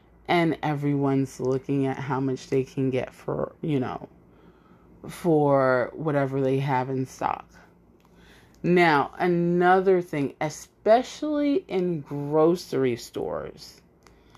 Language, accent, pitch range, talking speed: English, American, 150-185 Hz, 105 wpm